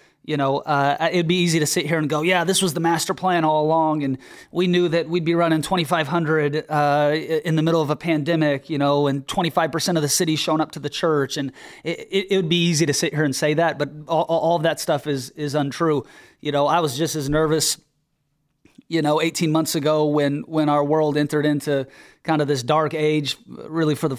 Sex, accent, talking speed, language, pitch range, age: male, American, 240 wpm, English, 145-165 Hz, 30-49